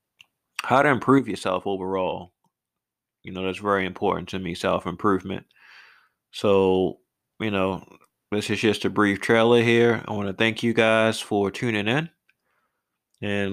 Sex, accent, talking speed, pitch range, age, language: male, American, 145 wpm, 95-115 Hz, 20-39, English